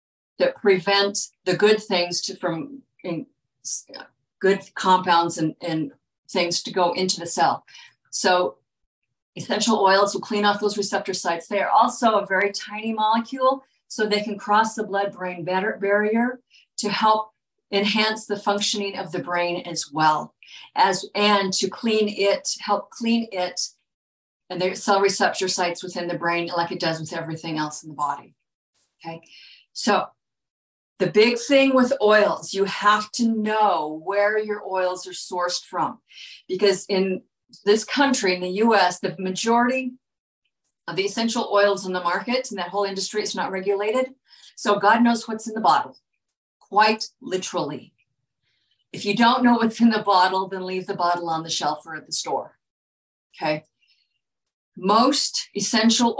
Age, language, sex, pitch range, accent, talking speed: 50-69, English, female, 175-215 Hz, American, 155 wpm